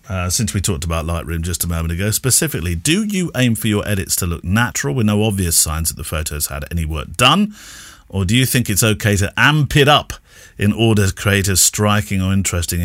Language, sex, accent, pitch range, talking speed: English, male, British, 90-120 Hz, 230 wpm